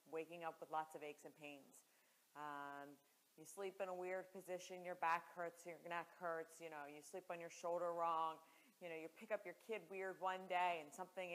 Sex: female